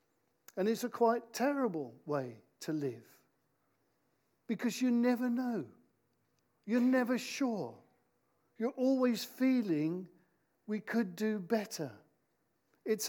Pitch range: 160-235 Hz